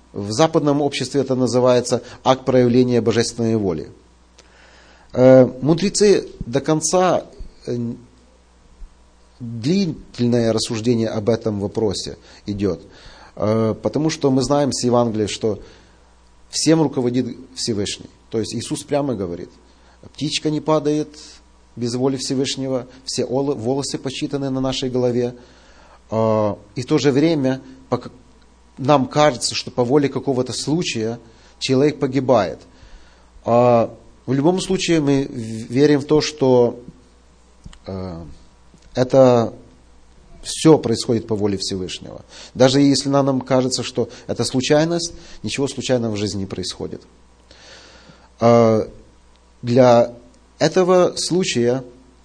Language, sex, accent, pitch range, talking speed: Russian, male, native, 105-135 Hz, 105 wpm